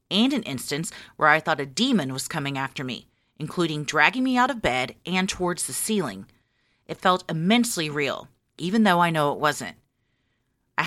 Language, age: English, 40-59